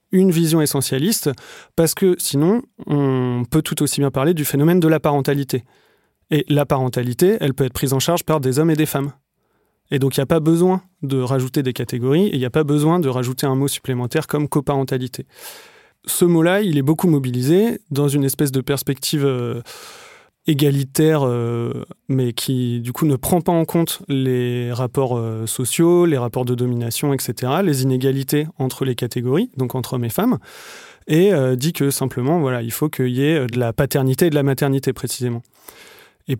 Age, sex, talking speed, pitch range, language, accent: 30-49, male, 190 wpm, 125-160 Hz, French, French